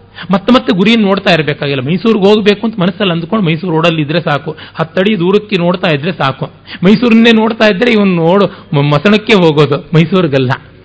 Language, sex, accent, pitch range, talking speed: Kannada, male, native, 130-185 Hz, 145 wpm